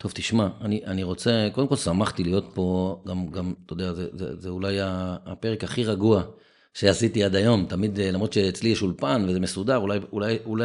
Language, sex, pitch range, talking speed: Hebrew, male, 95-110 Hz, 180 wpm